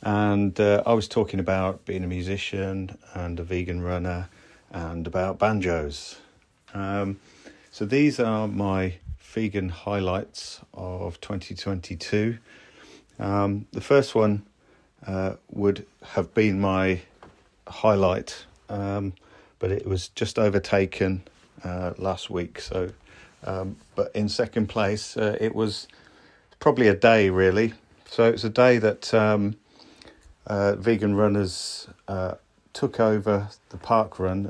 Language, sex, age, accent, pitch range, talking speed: English, male, 40-59, British, 95-110 Hz, 125 wpm